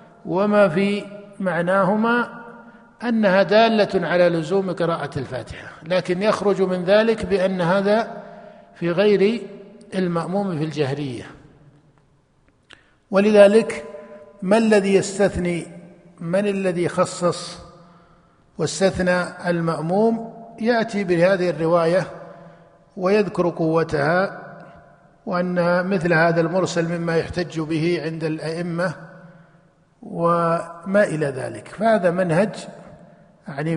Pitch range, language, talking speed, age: 165-200 Hz, Arabic, 85 wpm, 50-69